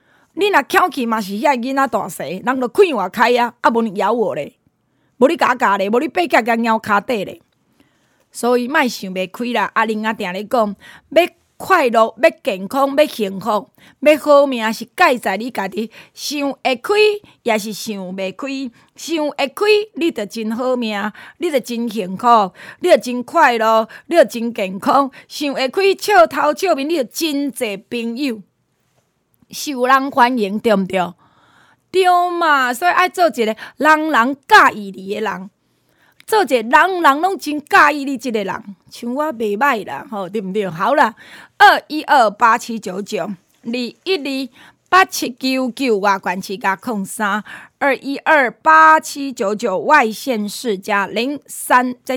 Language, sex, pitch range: Chinese, female, 215-300 Hz